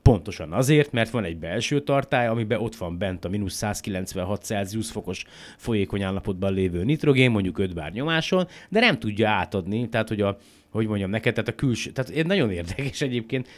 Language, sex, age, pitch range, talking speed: Hungarian, male, 30-49, 95-120 Hz, 180 wpm